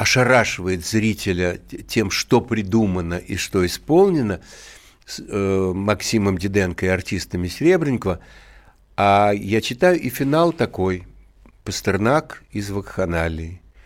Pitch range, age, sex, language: 100-145 Hz, 60-79, male, Russian